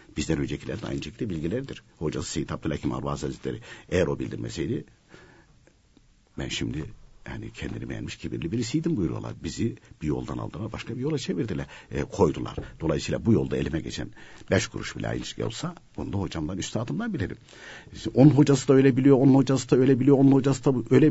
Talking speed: 175 wpm